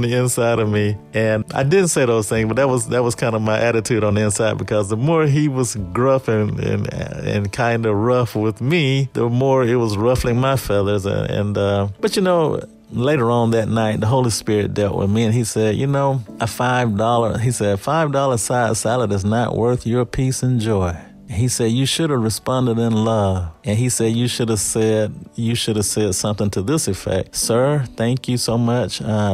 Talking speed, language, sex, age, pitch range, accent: 220 wpm, English, male, 30-49, 105-125 Hz, American